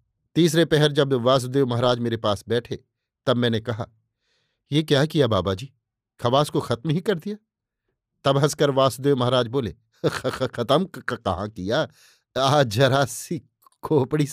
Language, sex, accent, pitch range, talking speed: Hindi, male, native, 120-150 Hz, 135 wpm